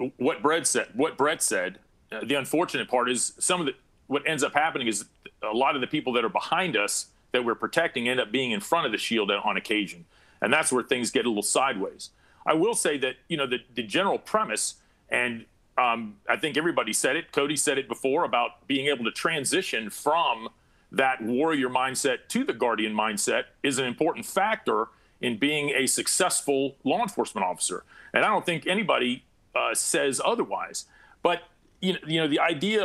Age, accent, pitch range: 40-59, American, 130-180 Hz